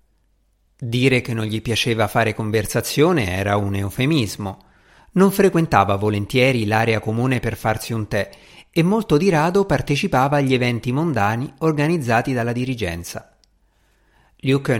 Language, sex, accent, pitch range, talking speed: Italian, male, native, 110-155 Hz, 125 wpm